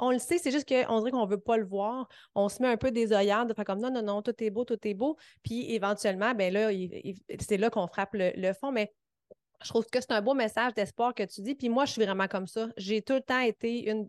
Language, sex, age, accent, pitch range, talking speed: French, female, 30-49, Canadian, 210-250 Hz, 285 wpm